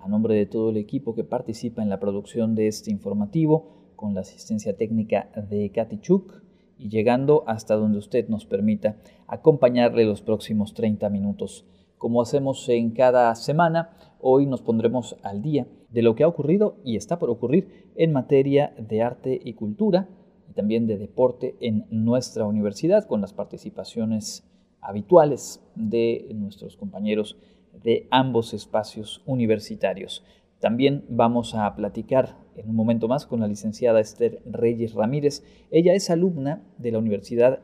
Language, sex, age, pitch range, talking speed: Spanish, male, 40-59, 110-145 Hz, 155 wpm